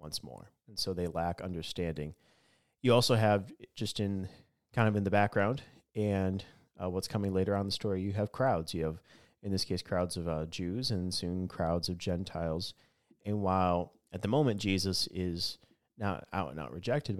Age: 30-49